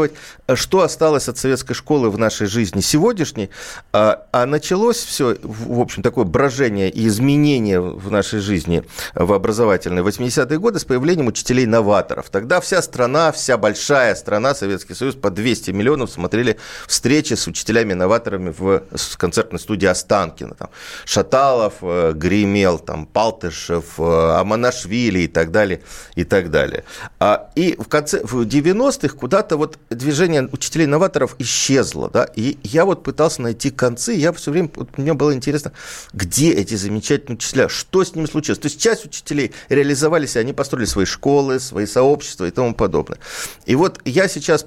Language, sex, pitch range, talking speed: Russian, male, 110-155 Hz, 150 wpm